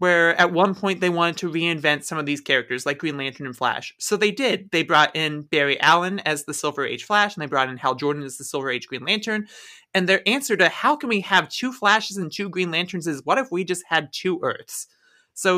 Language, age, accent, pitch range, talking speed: English, 30-49, American, 150-195 Hz, 250 wpm